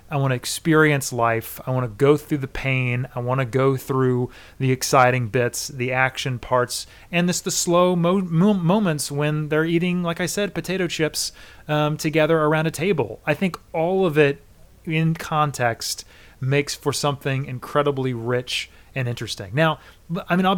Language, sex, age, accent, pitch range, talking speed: English, male, 30-49, American, 120-150 Hz, 180 wpm